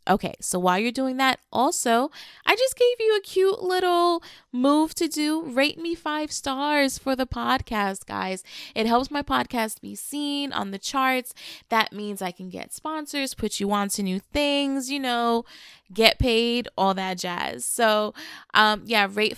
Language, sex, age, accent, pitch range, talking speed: English, female, 20-39, American, 200-265 Hz, 175 wpm